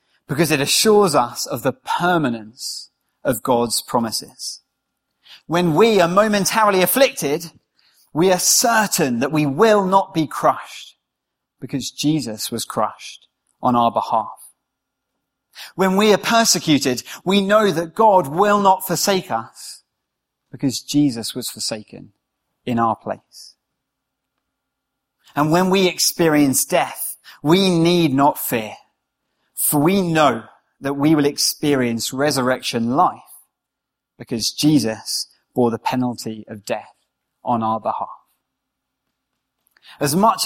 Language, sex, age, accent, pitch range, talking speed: English, male, 30-49, British, 125-175 Hz, 120 wpm